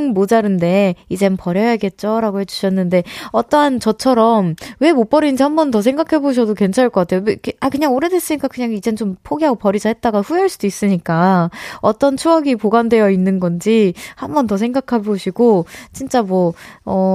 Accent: native